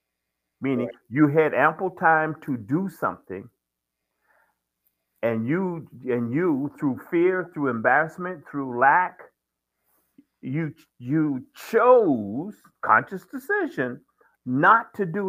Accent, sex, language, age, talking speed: American, male, English, 50-69, 100 wpm